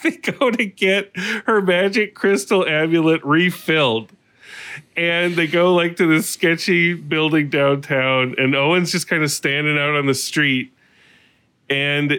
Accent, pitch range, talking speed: American, 130-170 Hz, 145 wpm